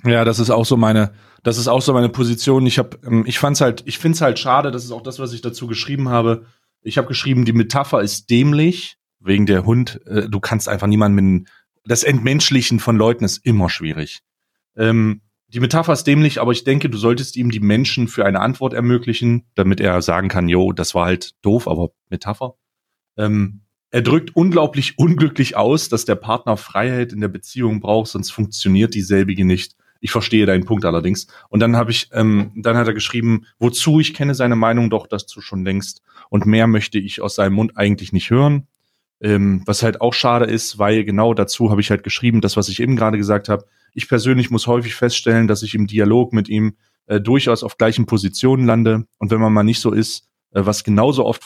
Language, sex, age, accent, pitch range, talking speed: German, male, 30-49, German, 105-125 Hz, 210 wpm